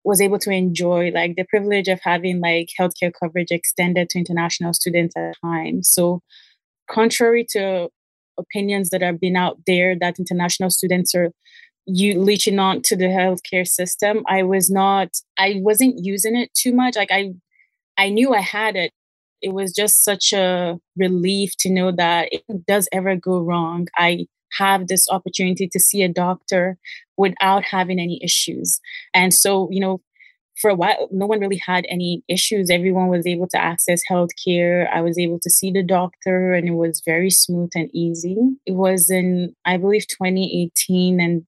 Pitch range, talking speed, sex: 175-195 Hz, 175 wpm, female